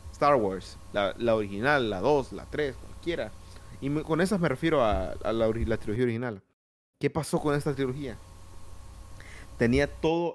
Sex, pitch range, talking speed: male, 115-155 Hz, 175 wpm